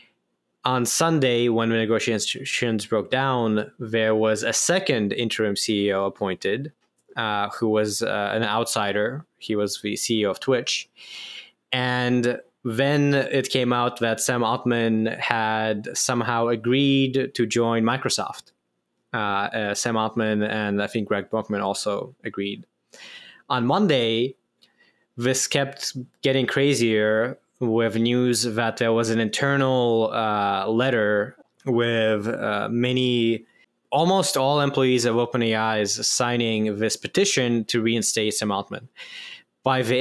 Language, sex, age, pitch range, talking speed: English, male, 20-39, 110-125 Hz, 125 wpm